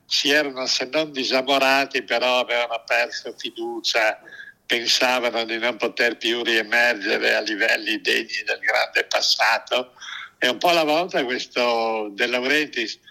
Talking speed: 135 wpm